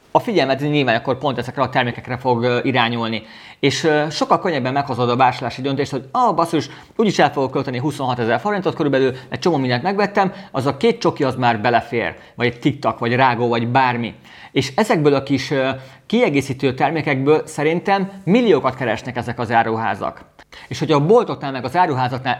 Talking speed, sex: 175 wpm, male